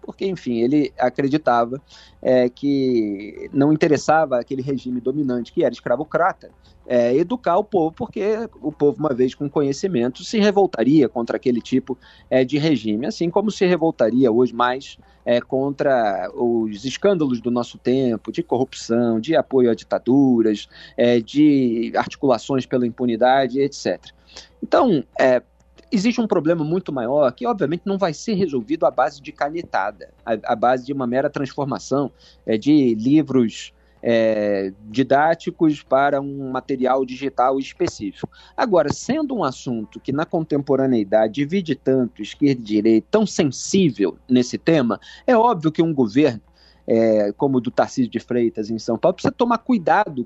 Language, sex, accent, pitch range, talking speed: Portuguese, male, Brazilian, 120-155 Hz, 140 wpm